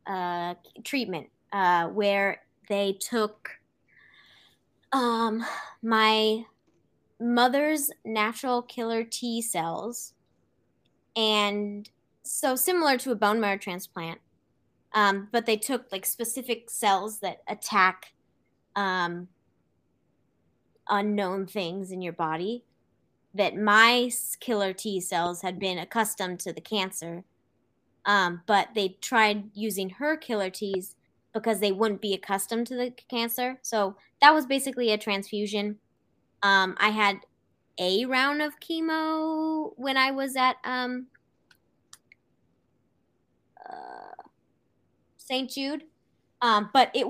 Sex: female